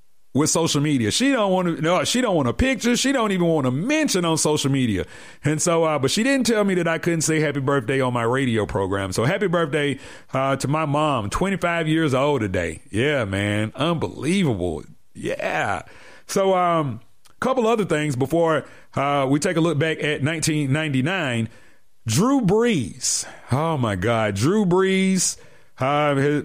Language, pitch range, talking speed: English, 130-180 Hz, 175 wpm